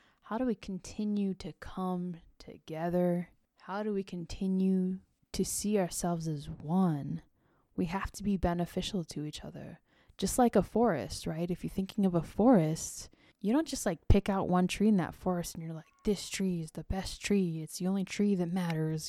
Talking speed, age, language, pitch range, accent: 190 wpm, 10-29, English, 170-205 Hz, American